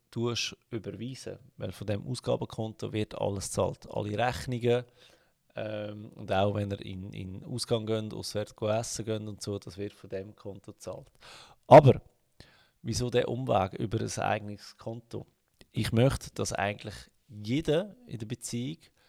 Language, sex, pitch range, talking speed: German, male, 105-120 Hz, 145 wpm